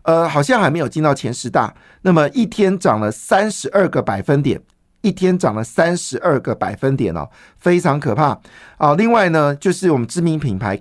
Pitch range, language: 130-175 Hz, Chinese